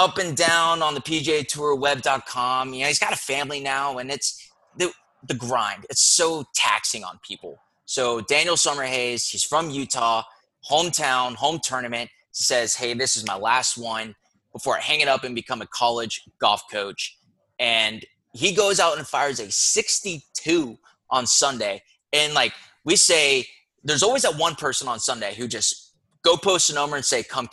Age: 20-39